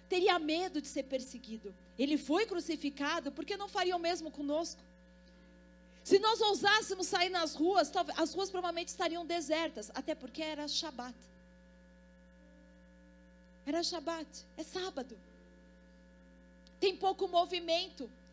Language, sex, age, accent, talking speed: Portuguese, female, 40-59, Brazilian, 120 wpm